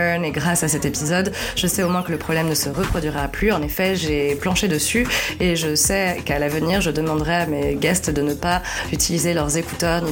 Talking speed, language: 225 wpm, French